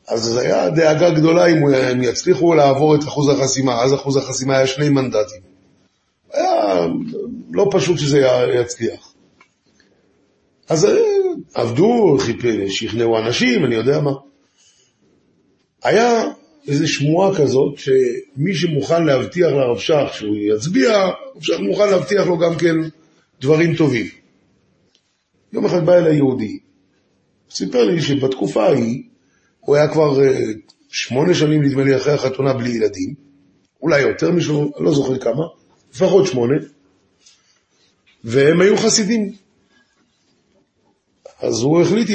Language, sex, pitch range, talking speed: Hebrew, male, 130-175 Hz, 110 wpm